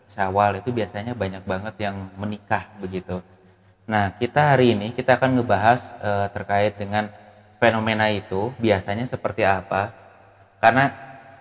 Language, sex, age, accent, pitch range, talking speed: Indonesian, male, 20-39, native, 95-115 Hz, 125 wpm